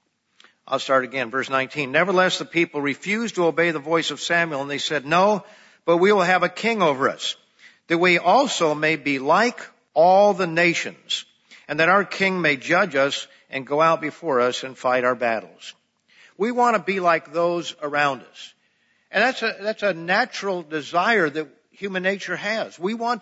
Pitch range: 140-185 Hz